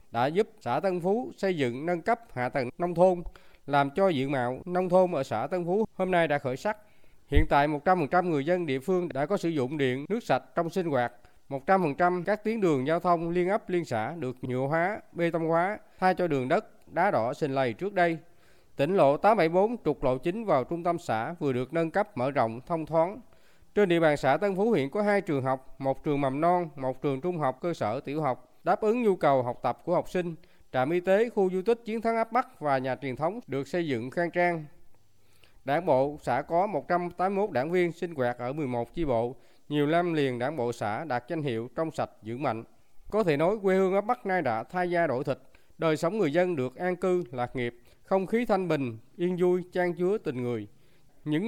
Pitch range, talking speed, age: 135-190 Hz, 230 wpm, 20-39